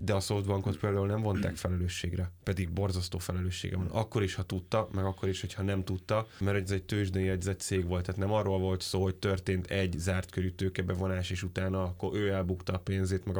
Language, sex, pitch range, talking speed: Hungarian, male, 95-100 Hz, 205 wpm